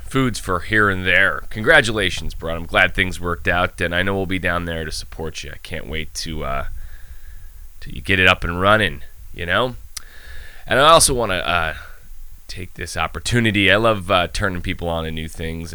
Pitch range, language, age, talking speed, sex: 80-100 Hz, English, 20-39, 200 wpm, male